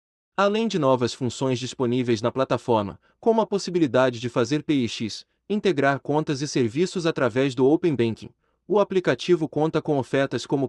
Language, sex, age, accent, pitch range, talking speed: Portuguese, male, 30-49, Brazilian, 120-160 Hz, 150 wpm